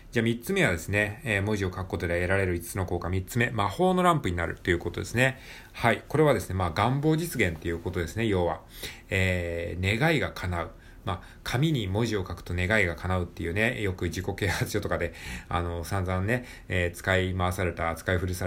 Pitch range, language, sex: 85-105 Hz, Japanese, male